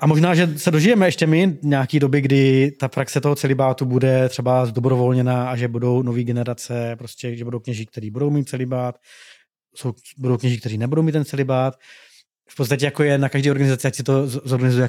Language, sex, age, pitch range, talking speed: Czech, male, 20-39, 130-145 Hz, 200 wpm